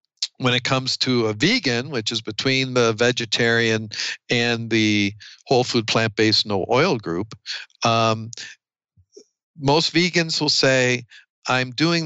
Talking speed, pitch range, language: 130 wpm, 115-135 Hz, English